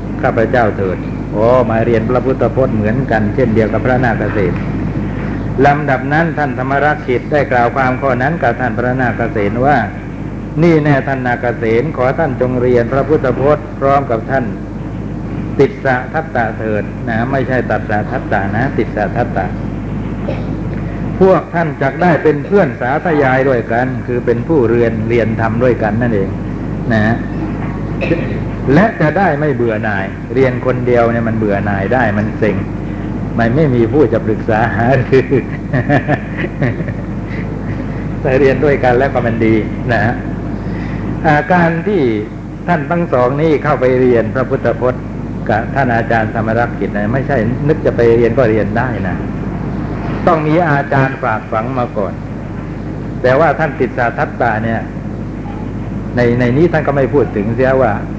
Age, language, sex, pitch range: 60-79, Thai, male, 110-135 Hz